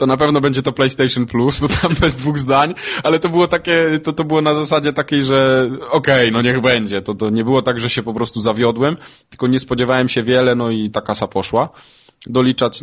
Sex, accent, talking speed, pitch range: male, native, 230 wpm, 100-130 Hz